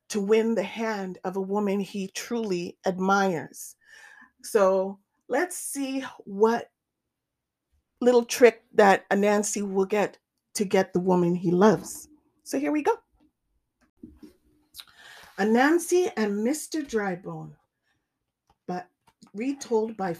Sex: female